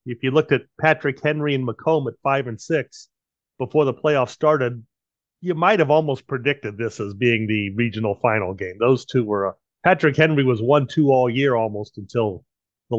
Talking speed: 195 wpm